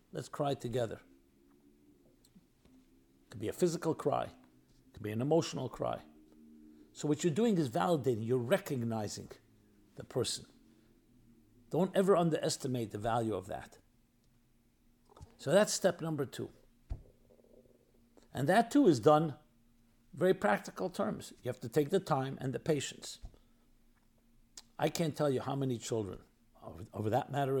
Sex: male